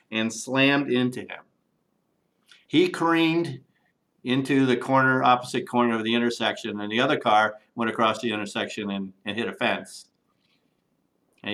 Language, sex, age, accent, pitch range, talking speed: English, male, 50-69, American, 110-135 Hz, 145 wpm